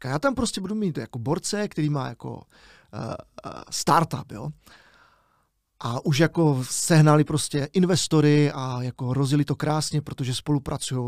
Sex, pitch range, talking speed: male, 135-170 Hz, 145 wpm